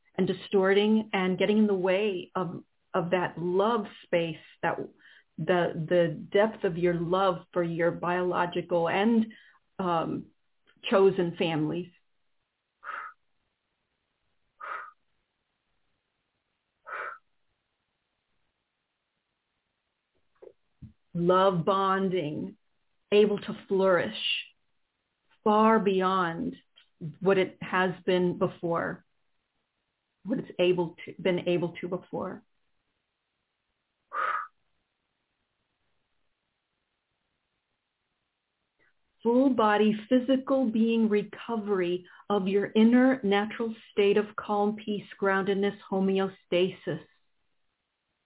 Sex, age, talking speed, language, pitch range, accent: female, 40-59, 75 wpm, English, 180-220 Hz, American